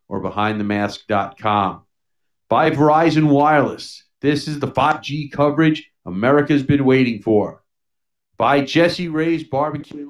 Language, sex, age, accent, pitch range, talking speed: English, male, 50-69, American, 115-150 Hz, 115 wpm